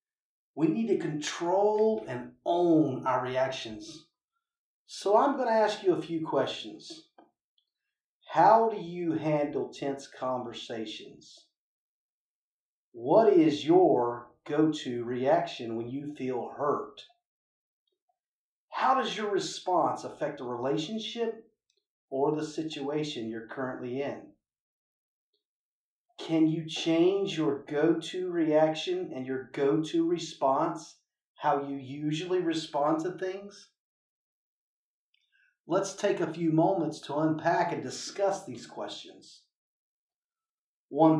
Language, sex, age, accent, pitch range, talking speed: English, male, 40-59, American, 135-220 Hz, 105 wpm